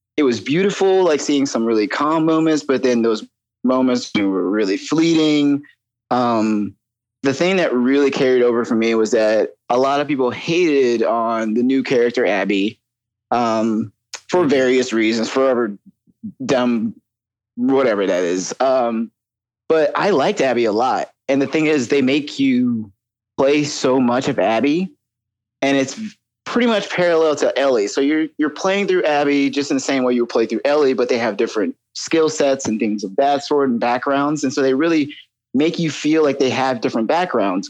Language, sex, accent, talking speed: English, male, American, 180 wpm